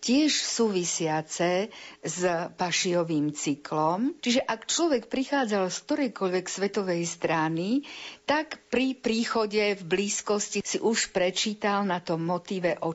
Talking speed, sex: 115 wpm, female